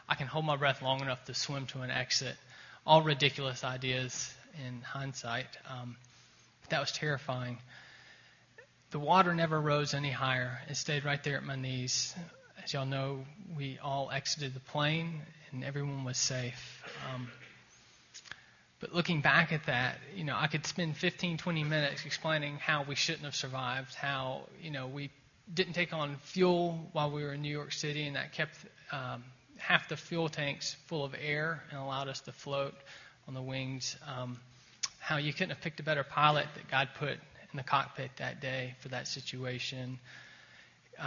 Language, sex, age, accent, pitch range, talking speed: English, male, 20-39, American, 130-150 Hz, 180 wpm